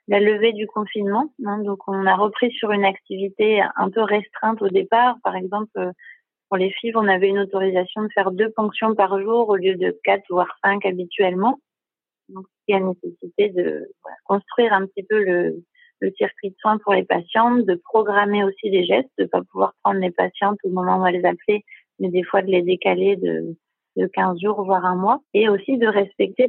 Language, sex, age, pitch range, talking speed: French, female, 30-49, 190-220 Hz, 205 wpm